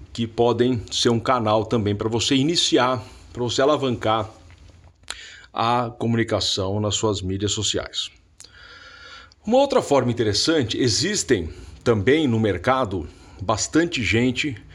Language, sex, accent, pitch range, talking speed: Portuguese, male, Brazilian, 95-145 Hz, 115 wpm